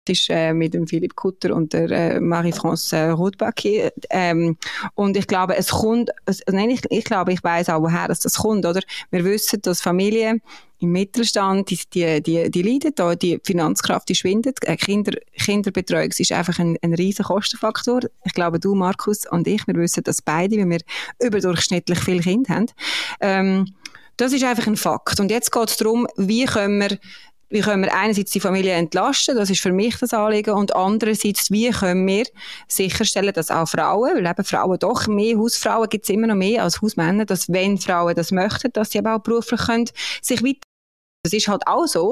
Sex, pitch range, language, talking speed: female, 175-220 Hz, German, 190 wpm